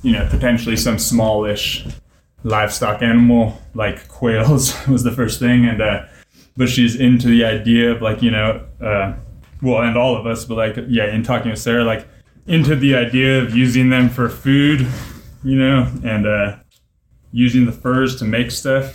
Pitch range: 110-125 Hz